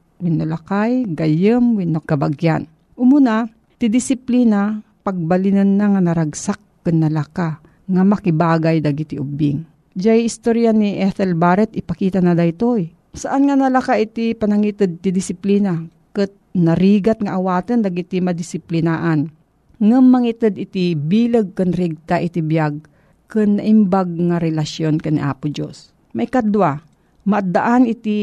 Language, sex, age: Filipino, female, 50-69